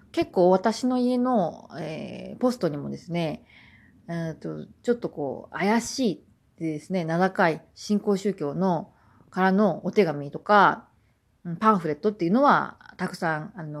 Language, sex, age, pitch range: Japanese, female, 40-59, 160-225 Hz